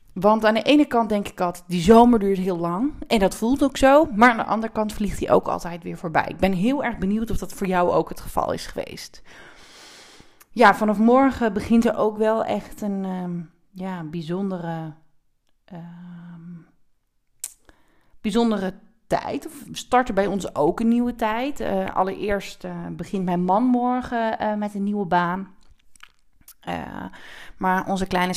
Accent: Dutch